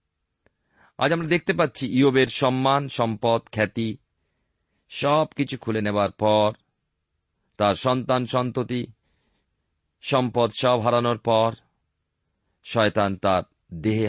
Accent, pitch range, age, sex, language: native, 90-130 Hz, 40-59, male, Bengali